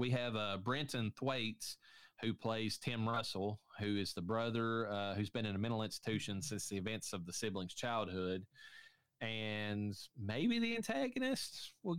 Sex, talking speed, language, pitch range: male, 160 wpm, English, 100-120 Hz